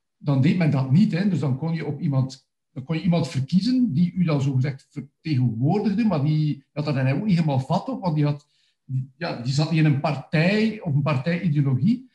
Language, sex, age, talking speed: Dutch, male, 50-69, 225 wpm